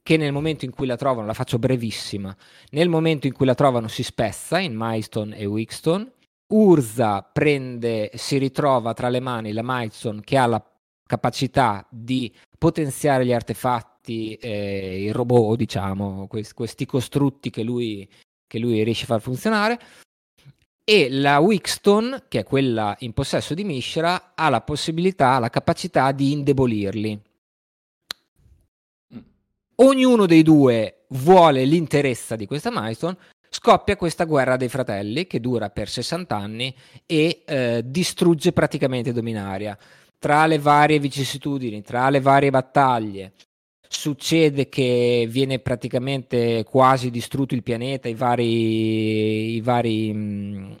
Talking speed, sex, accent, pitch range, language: 135 wpm, male, native, 115-145 Hz, Italian